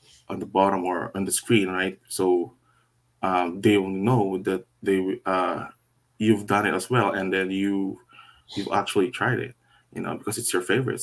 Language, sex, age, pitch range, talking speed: English, male, 20-39, 95-120 Hz, 185 wpm